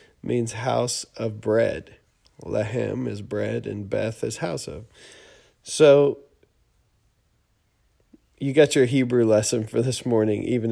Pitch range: 110-130 Hz